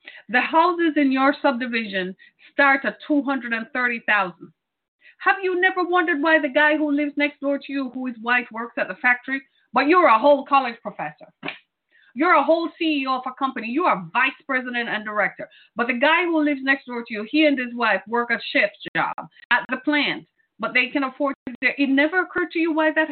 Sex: female